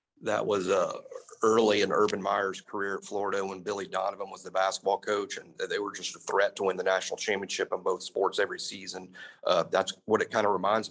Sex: male